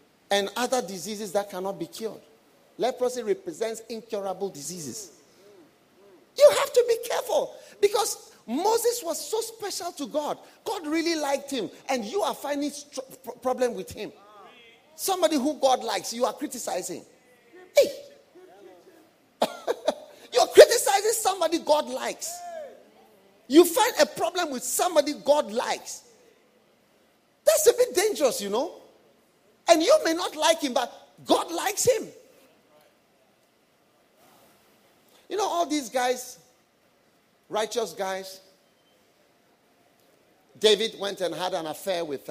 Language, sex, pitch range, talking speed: English, male, 215-360 Hz, 125 wpm